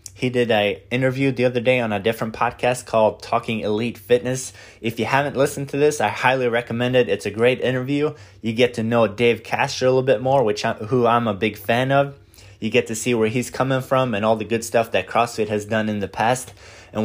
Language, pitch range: English, 110-130 Hz